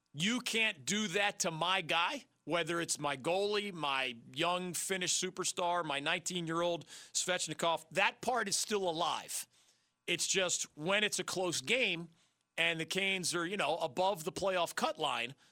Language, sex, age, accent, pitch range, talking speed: English, male, 40-59, American, 150-195 Hz, 160 wpm